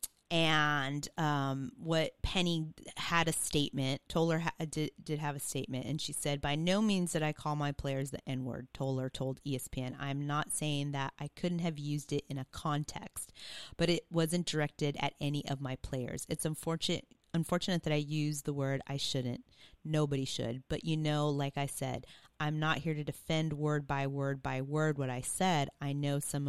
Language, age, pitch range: English, 30-49, 135-160 Hz